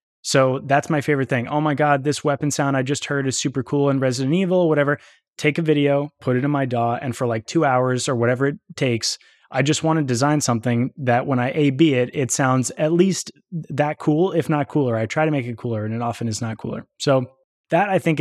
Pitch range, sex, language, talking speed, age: 125-150 Hz, male, English, 245 wpm, 20-39